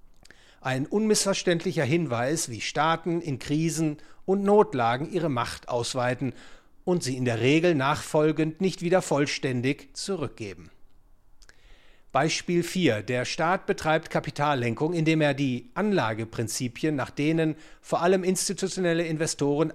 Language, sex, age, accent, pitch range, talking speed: English, male, 50-69, German, 135-175 Hz, 115 wpm